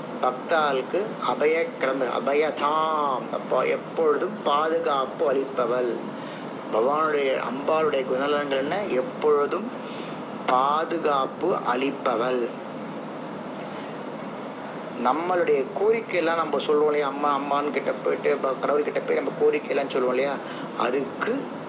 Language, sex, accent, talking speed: Tamil, male, native, 70 wpm